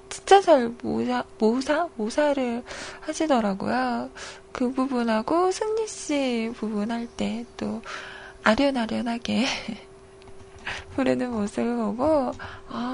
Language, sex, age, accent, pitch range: Korean, female, 20-39, native, 210-305 Hz